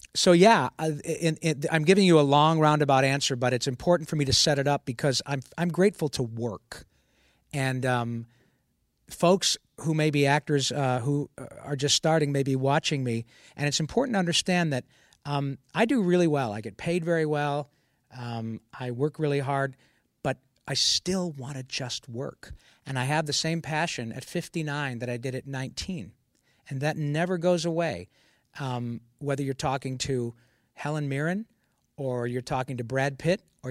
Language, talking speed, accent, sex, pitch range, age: English, 185 wpm, American, male, 130-160 Hz, 50-69